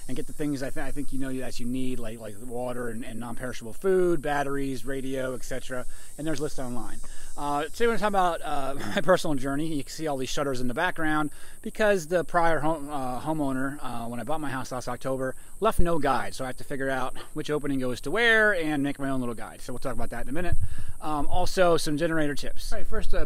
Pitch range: 115-150 Hz